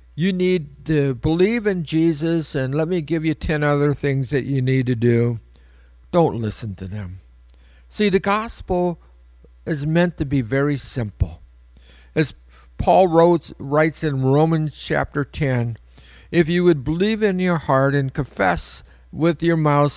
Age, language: 50-69, English